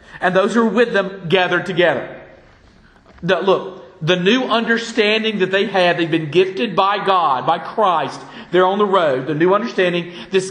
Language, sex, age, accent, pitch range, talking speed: English, male, 40-59, American, 175-210 Hz, 170 wpm